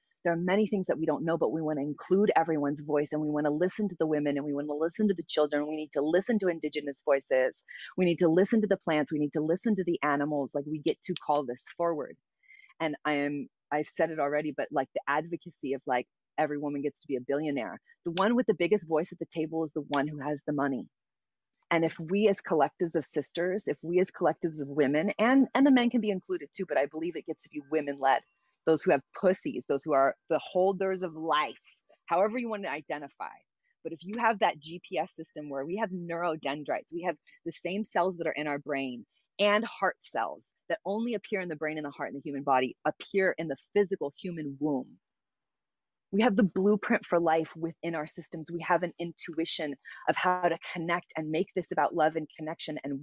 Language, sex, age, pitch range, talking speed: English, female, 30-49, 145-185 Hz, 235 wpm